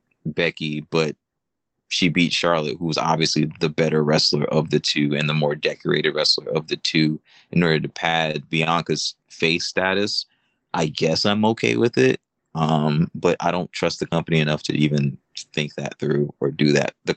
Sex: male